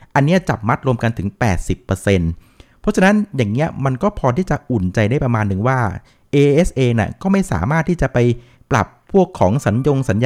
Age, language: 60-79, Thai